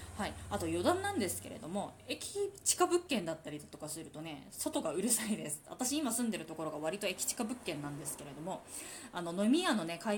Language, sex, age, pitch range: Japanese, female, 20-39, 175-250 Hz